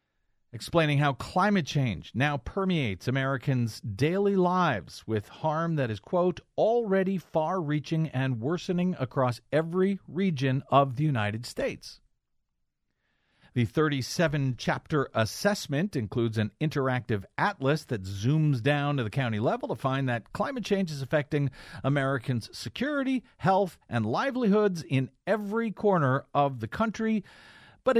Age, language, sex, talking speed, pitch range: 50-69, English, male, 125 wpm, 125-180 Hz